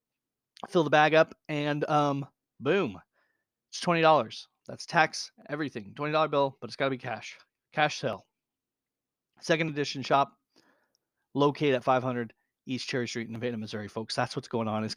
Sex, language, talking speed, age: male, English, 160 wpm, 30-49